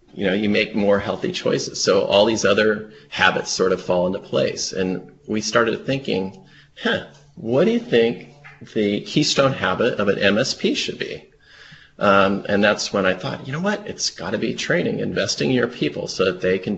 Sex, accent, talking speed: male, American, 200 wpm